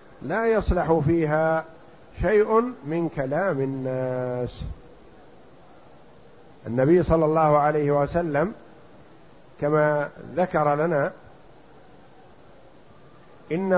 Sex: male